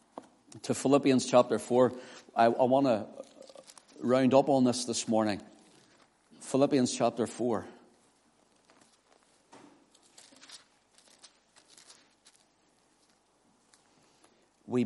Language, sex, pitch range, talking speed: English, male, 115-135 Hz, 70 wpm